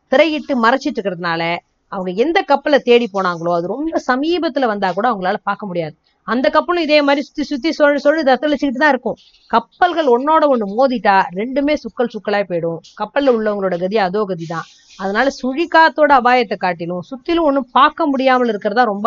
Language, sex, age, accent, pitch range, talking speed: Tamil, female, 20-39, native, 215-300 Hz, 155 wpm